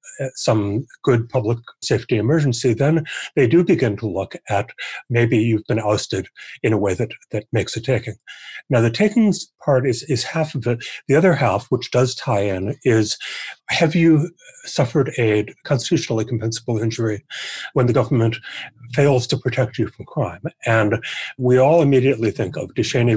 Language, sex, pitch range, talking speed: English, male, 110-130 Hz, 165 wpm